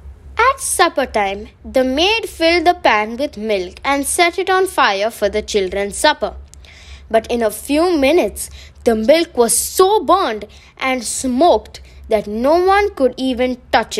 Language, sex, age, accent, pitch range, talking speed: English, female, 20-39, Indian, 205-320 Hz, 160 wpm